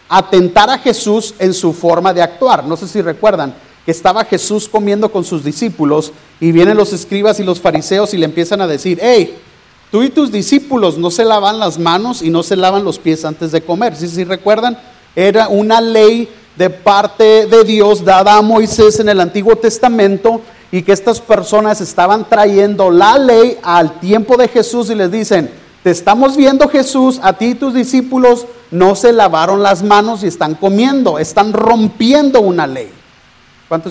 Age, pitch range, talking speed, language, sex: 40-59, 175-230 Hz, 185 wpm, Spanish, male